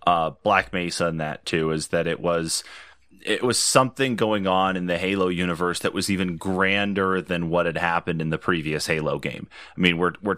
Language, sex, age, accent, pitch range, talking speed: English, male, 30-49, American, 85-95 Hz, 210 wpm